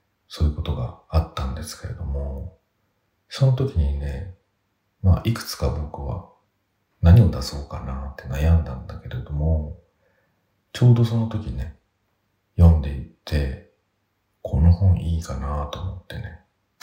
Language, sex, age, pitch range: Japanese, male, 50-69, 80-100 Hz